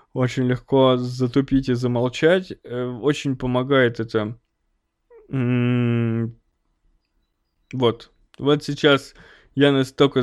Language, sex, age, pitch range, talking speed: Russian, male, 20-39, 125-145 Hz, 90 wpm